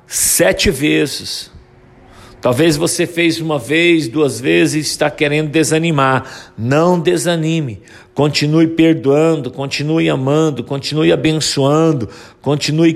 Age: 50-69